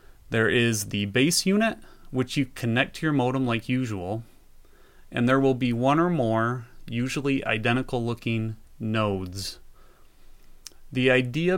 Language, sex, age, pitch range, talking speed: English, male, 30-49, 105-135 Hz, 135 wpm